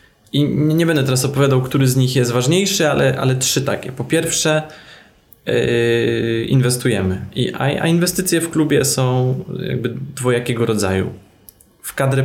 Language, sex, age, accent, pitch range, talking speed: Polish, male, 20-39, native, 115-135 Hz, 140 wpm